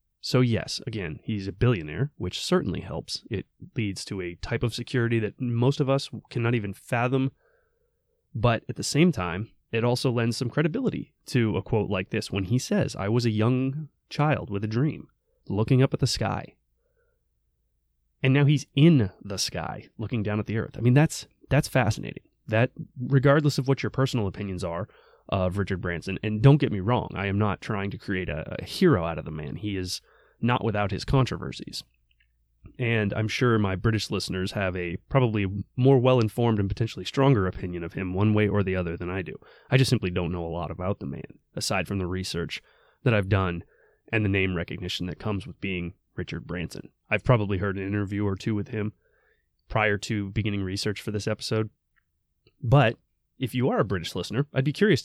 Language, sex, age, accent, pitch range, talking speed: English, male, 20-39, American, 95-130 Hz, 200 wpm